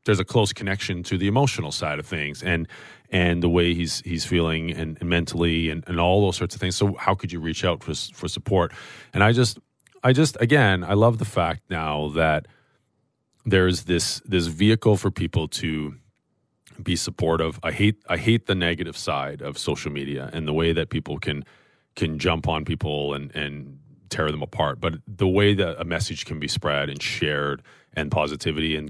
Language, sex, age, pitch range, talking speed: English, male, 30-49, 80-100 Hz, 200 wpm